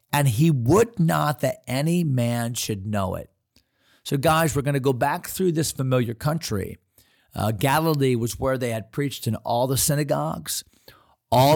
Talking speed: 170 wpm